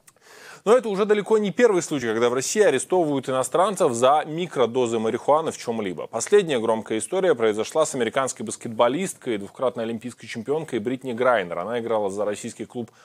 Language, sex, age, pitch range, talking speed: Russian, male, 20-39, 115-150 Hz, 160 wpm